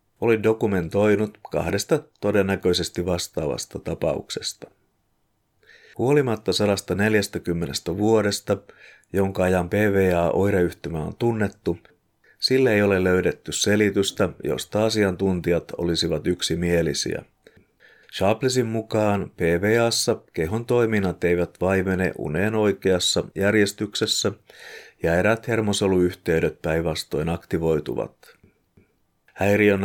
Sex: male